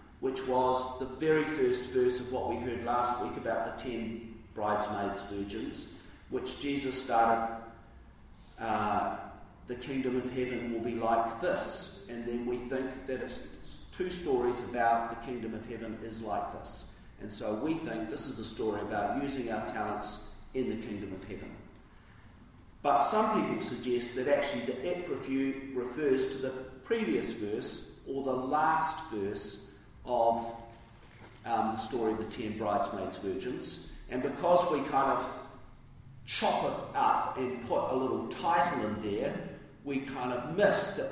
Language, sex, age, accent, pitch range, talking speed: English, male, 40-59, Australian, 110-135 Hz, 160 wpm